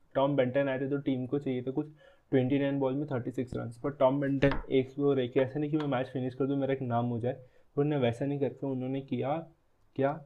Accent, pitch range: native, 125-140 Hz